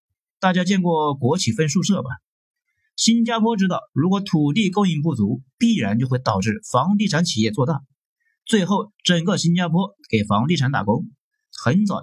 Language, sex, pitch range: Chinese, male, 130-205 Hz